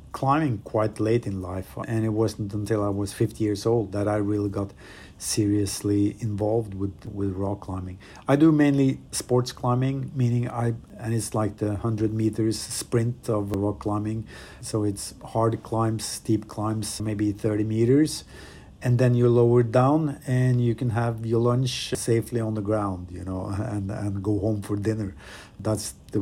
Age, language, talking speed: 50-69, English, 170 wpm